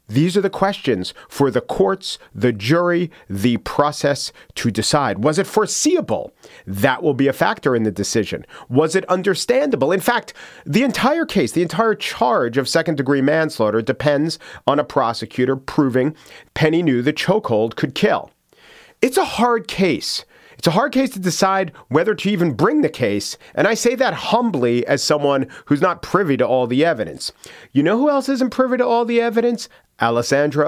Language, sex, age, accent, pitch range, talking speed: English, male, 40-59, American, 130-195 Hz, 175 wpm